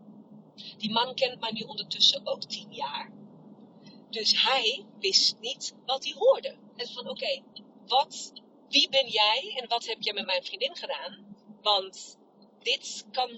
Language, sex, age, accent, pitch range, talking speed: Dutch, female, 30-49, Dutch, 220-320 Hz, 150 wpm